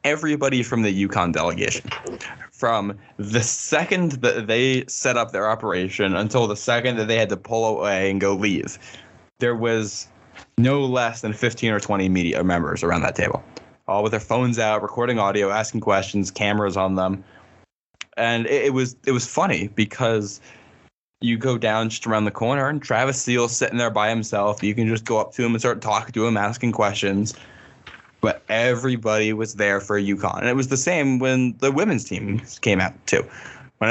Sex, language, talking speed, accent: male, English, 190 wpm, American